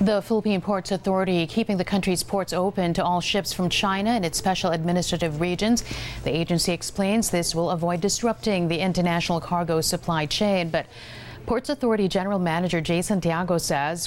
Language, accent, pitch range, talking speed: English, American, 140-185 Hz, 165 wpm